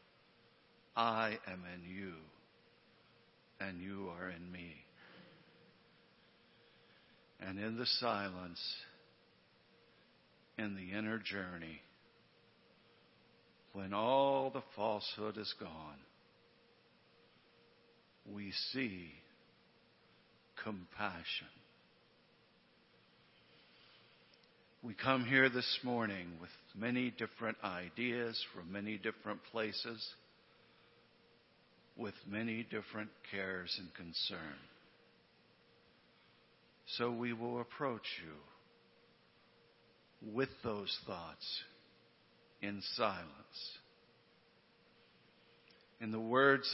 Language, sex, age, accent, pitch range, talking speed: English, male, 60-79, American, 95-120 Hz, 75 wpm